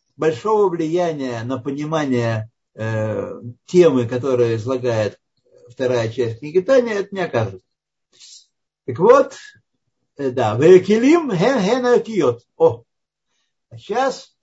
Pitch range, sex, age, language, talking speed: 130-195 Hz, male, 50-69, Russian, 85 wpm